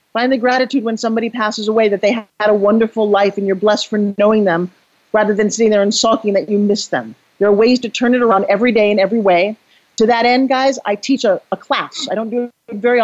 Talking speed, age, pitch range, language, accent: 255 wpm, 40-59, 210-250 Hz, English, American